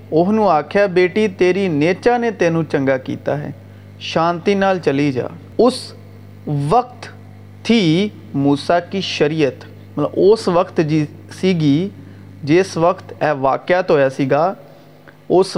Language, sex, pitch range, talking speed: Urdu, male, 145-195 Hz, 110 wpm